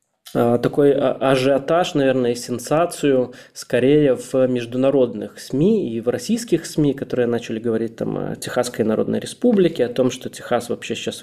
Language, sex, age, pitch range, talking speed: Russian, male, 20-39, 115-140 Hz, 145 wpm